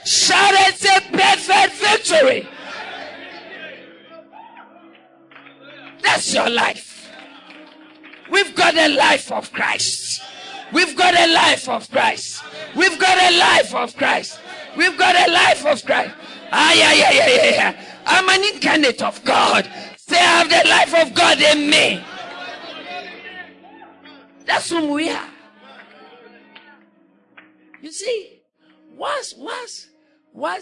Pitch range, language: 250-350 Hz, English